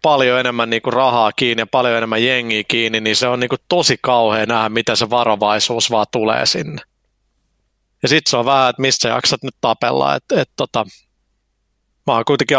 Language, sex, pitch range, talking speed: Finnish, male, 115-130 Hz, 190 wpm